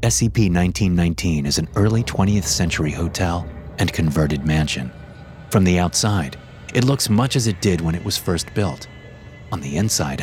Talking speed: 160 wpm